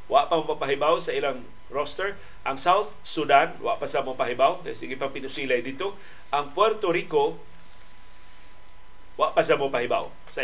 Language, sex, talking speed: Filipino, male, 160 wpm